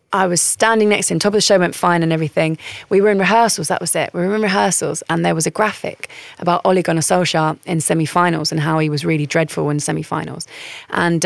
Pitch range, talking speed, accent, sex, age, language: 165-210 Hz, 240 wpm, British, female, 20-39, English